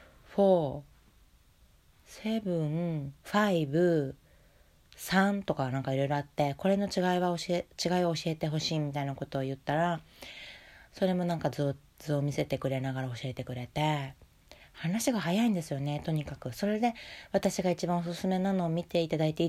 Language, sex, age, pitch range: Japanese, female, 20-39, 145-190 Hz